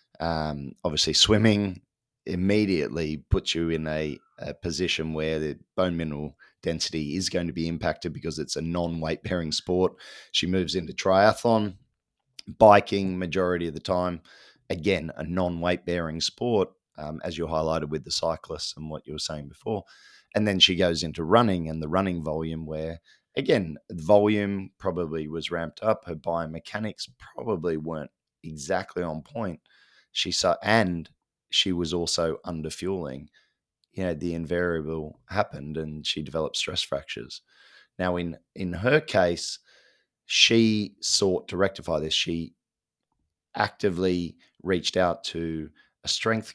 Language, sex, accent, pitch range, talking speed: English, male, Australian, 80-95 Hz, 140 wpm